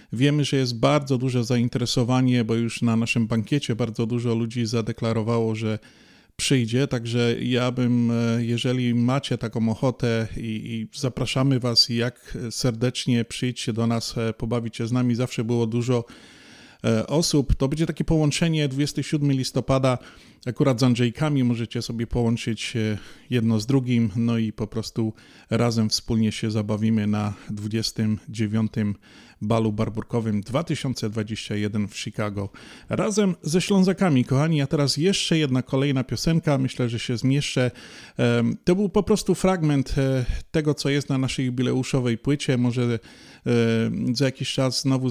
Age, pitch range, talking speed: 30-49, 115-135 Hz, 135 wpm